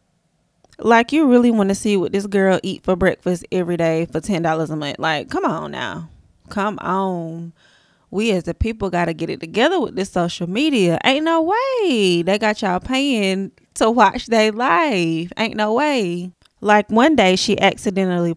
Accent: American